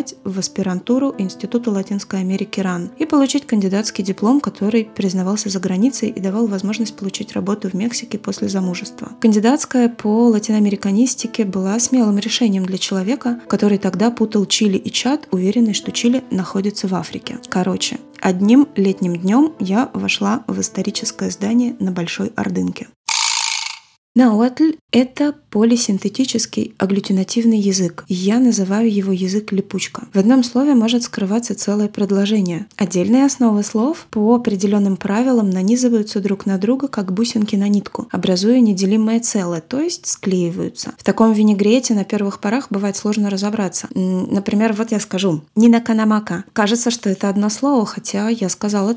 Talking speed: 140 wpm